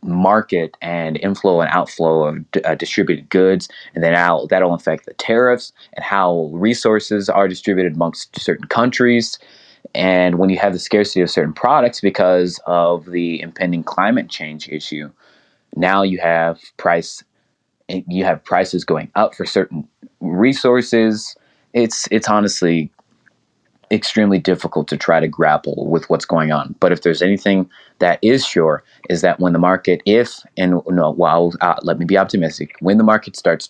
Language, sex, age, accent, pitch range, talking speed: English, male, 20-39, American, 85-100 Hz, 160 wpm